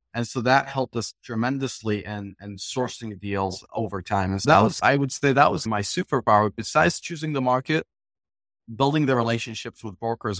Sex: male